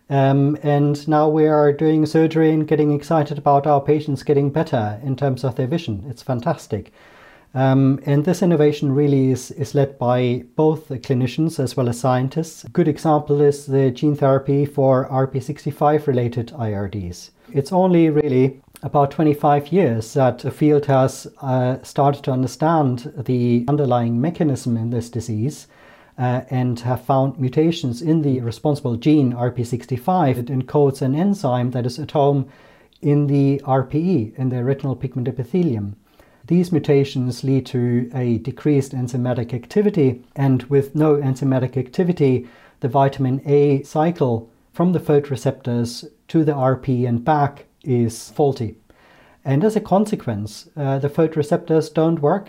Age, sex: 40-59, male